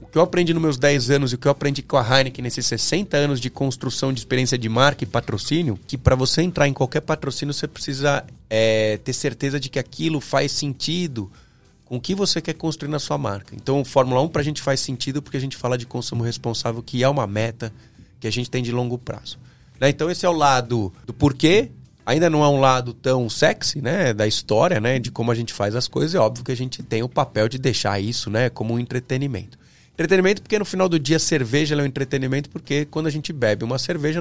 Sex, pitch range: male, 125-155 Hz